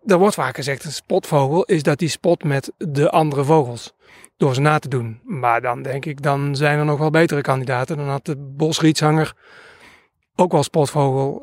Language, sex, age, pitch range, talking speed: Dutch, male, 30-49, 145-180 Hz, 195 wpm